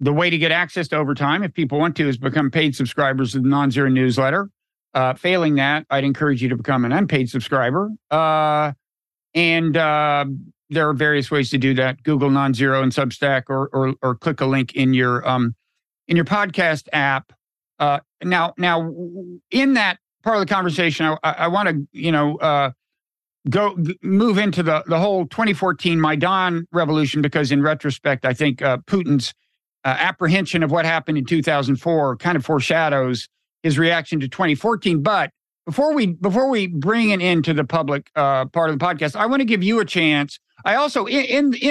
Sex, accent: male, American